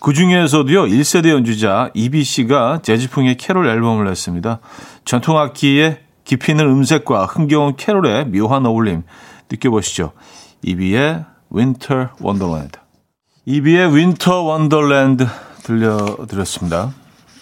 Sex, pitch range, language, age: male, 105-155 Hz, Korean, 40-59